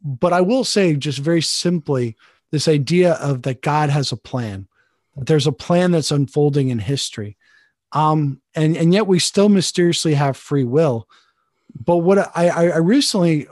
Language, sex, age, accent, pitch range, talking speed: English, male, 40-59, American, 135-170 Hz, 170 wpm